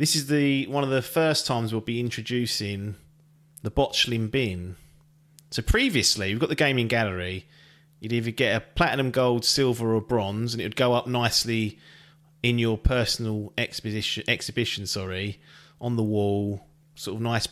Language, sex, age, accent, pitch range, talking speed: English, male, 30-49, British, 105-140 Hz, 165 wpm